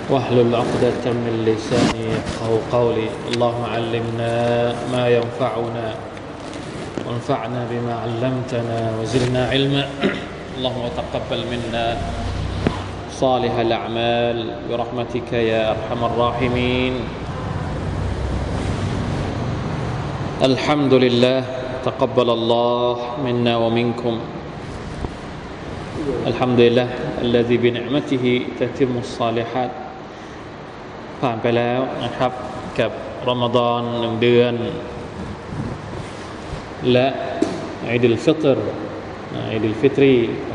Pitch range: 115-125 Hz